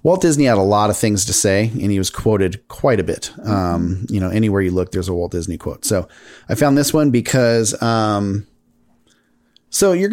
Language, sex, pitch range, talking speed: English, male, 100-130 Hz, 215 wpm